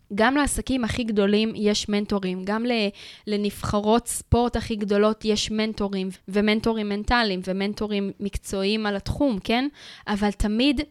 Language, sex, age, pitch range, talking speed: Hebrew, female, 20-39, 195-235 Hz, 120 wpm